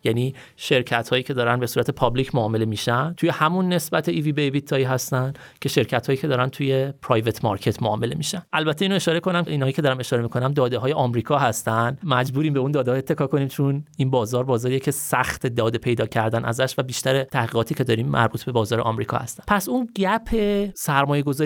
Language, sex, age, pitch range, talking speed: Persian, male, 30-49, 120-160 Hz, 200 wpm